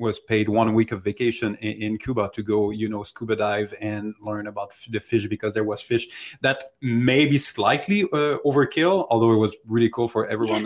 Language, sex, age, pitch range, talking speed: English, male, 30-49, 110-130 Hz, 195 wpm